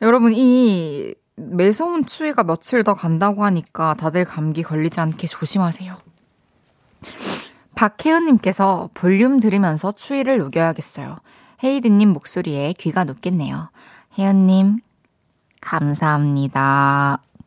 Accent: native